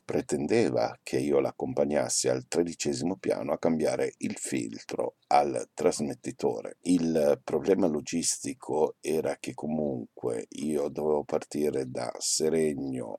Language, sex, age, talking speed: Italian, male, 60-79, 110 wpm